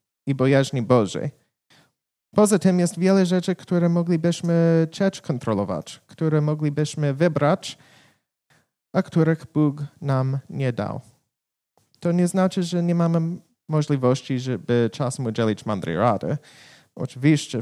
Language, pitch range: Polish, 125-170 Hz